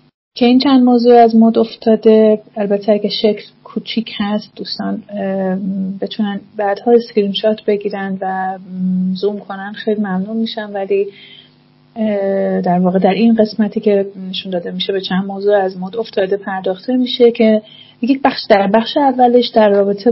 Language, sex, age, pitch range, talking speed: Persian, female, 30-49, 190-220 Hz, 145 wpm